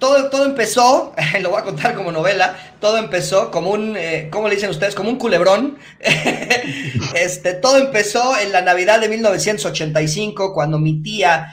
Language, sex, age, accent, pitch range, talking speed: Spanish, male, 30-49, Mexican, 155-205 Hz, 165 wpm